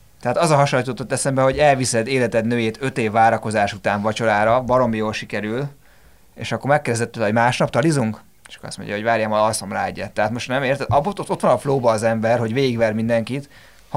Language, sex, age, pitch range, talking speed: Hungarian, male, 30-49, 105-125 Hz, 200 wpm